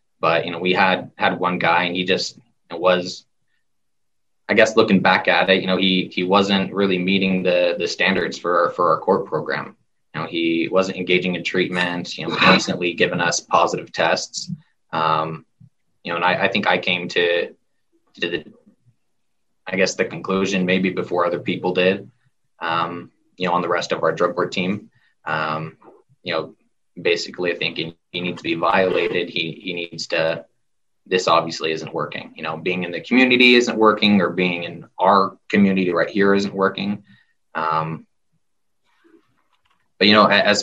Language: English